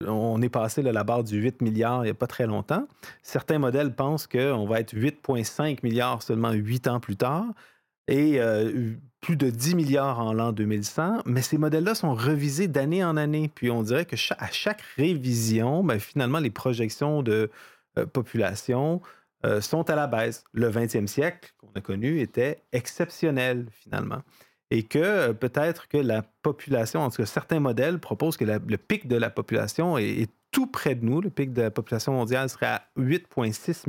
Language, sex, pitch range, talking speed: French, male, 115-150 Hz, 180 wpm